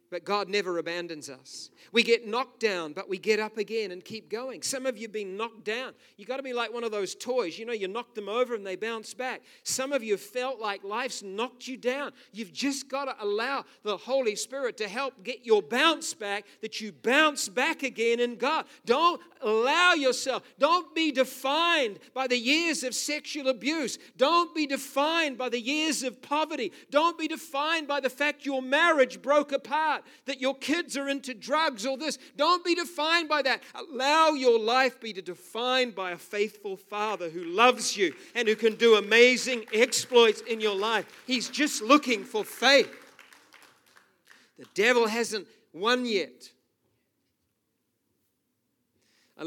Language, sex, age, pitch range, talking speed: English, male, 50-69, 210-275 Hz, 180 wpm